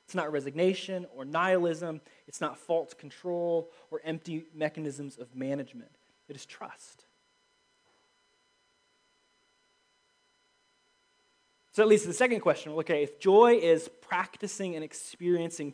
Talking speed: 115 wpm